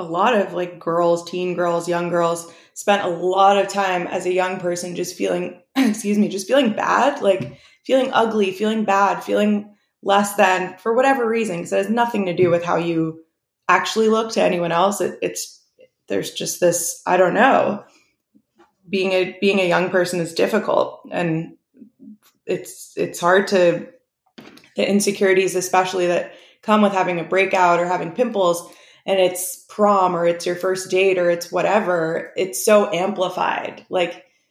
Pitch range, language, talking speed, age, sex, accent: 180-215 Hz, English, 170 wpm, 20-39, female, American